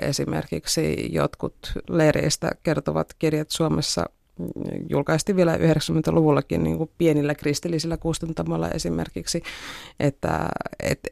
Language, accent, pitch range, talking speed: Finnish, native, 145-165 Hz, 80 wpm